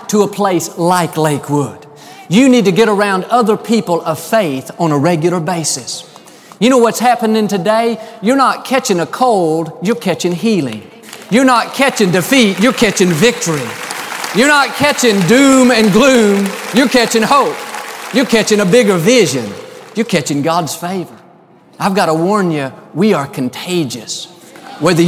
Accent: American